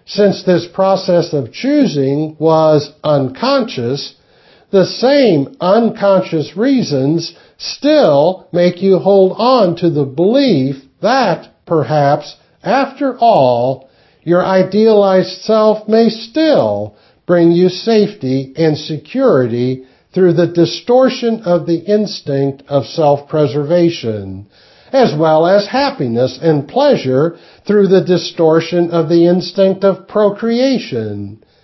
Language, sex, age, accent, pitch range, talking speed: English, male, 60-79, American, 140-200 Hz, 105 wpm